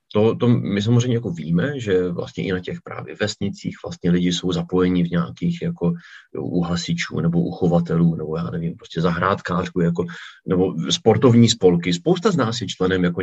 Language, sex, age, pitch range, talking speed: Czech, male, 40-59, 85-110 Hz, 170 wpm